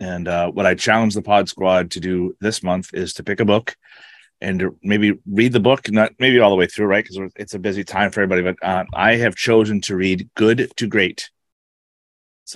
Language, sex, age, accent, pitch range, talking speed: English, male, 30-49, American, 95-110 Hz, 230 wpm